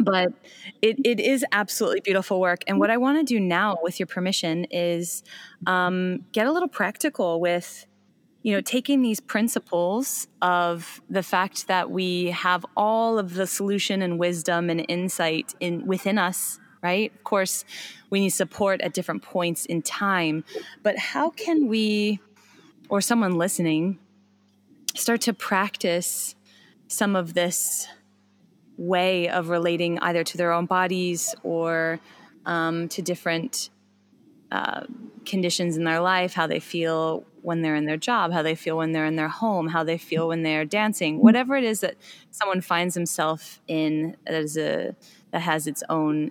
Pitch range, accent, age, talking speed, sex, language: 170-215 Hz, American, 20-39, 160 wpm, female, English